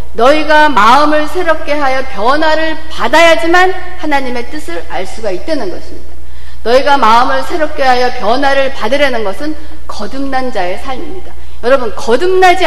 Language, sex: Korean, female